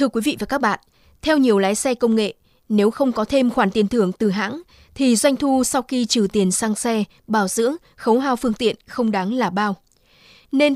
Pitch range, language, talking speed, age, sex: 210-260 Hz, Vietnamese, 230 wpm, 20-39, female